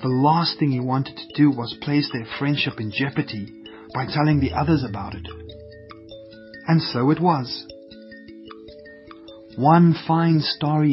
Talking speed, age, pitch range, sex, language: 145 wpm, 40-59, 115-150 Hz, male, English